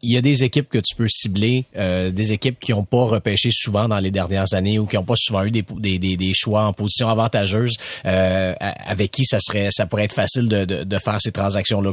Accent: Canadian